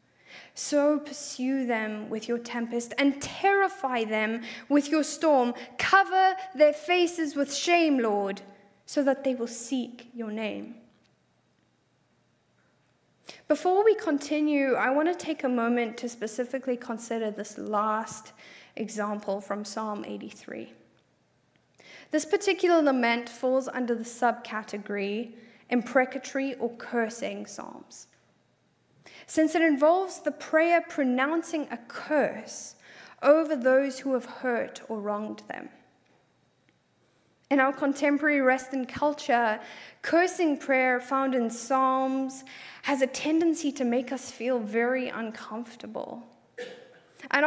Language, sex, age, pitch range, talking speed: English, female, 10-29, 235-310 Hz, 115 wpm